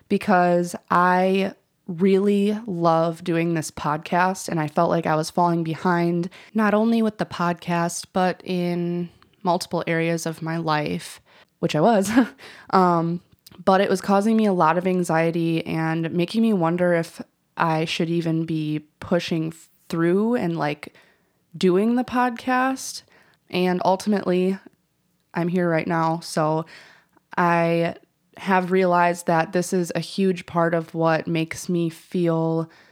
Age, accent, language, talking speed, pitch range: 20-39, American, English, 140 wpm, 165-190 Hz